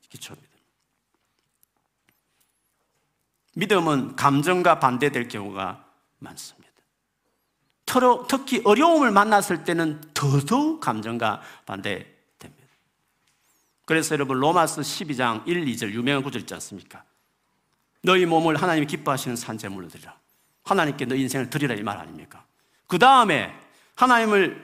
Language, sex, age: Korean, male, 50-69